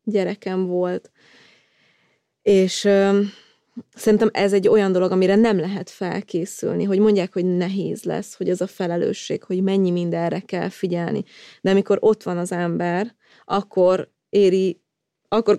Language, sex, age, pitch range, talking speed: Hungarian, female, 20-39, 175-195 Hz, 140 wpm